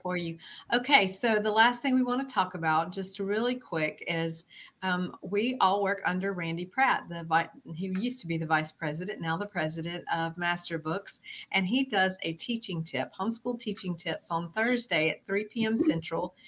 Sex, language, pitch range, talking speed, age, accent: female, English, 165-200 Hz, 190 wpm, 50-69, American